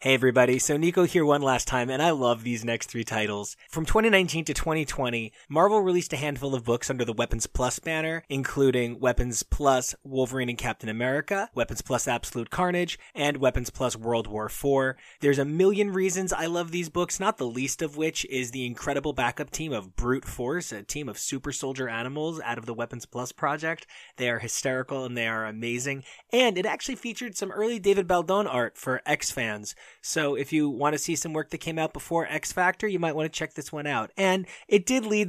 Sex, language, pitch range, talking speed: male, English, 130-165 Hz, 210 wpm